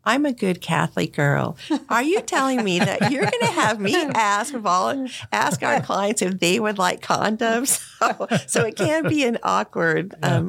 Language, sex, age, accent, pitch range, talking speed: English, female, 50-69, American, 150-185 Hz, 190 wpm